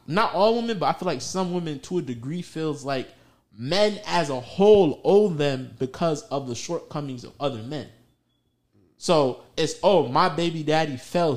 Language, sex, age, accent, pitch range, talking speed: English, male, 20-39, American, 140-215 Hz, 180 wpm